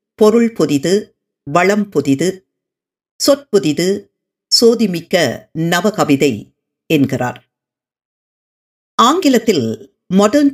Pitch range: 155-220 Hz